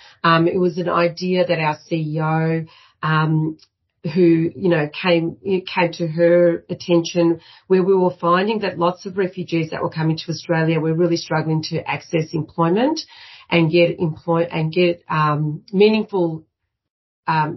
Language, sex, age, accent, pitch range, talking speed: English, female, 40-59, Australian, 160-180 Hz, 155 wpm